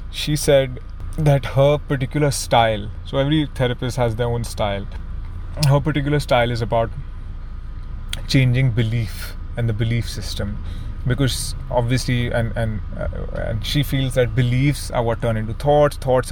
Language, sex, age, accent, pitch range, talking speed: English, male, 20-39, Indian, 100-130 Hz, 145 wpm